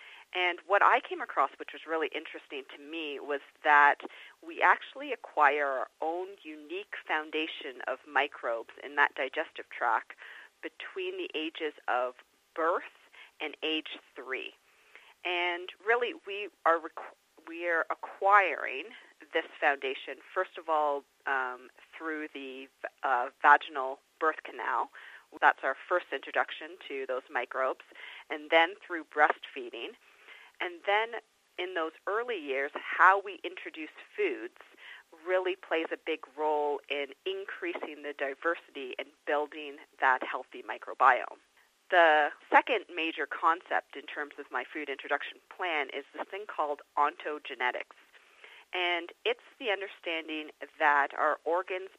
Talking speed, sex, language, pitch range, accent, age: 130 wpm, female, English, 150-225 Hz, American, 40-59